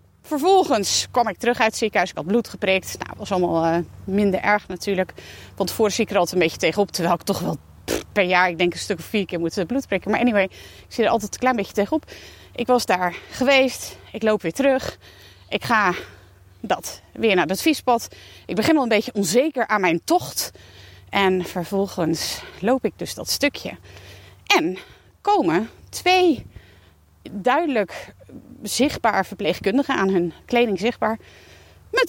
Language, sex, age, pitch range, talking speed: Dutch, female, 30-49, 185-260 Hz, 180 wpm